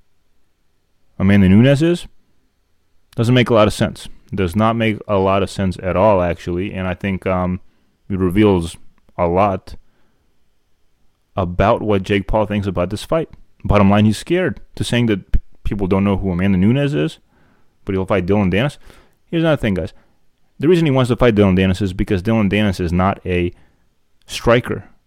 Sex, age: male, 30-49